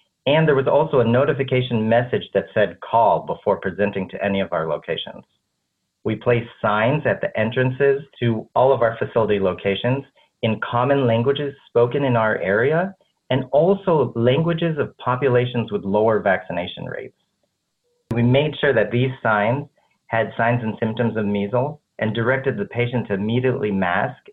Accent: American